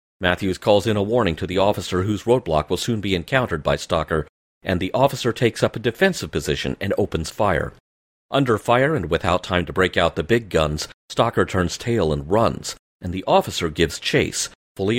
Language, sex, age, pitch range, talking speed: English, male, 40-59, 80-120 Hz, 195 wpm